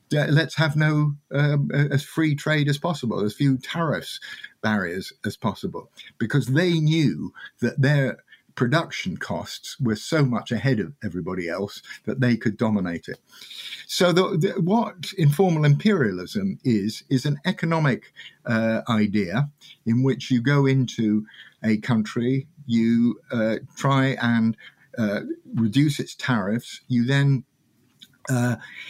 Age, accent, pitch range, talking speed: 50-69, British, 115-145 Hz, 130 wpm